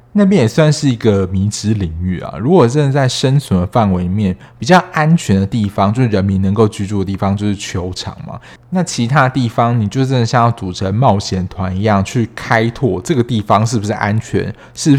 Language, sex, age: Chinese, male, 20-39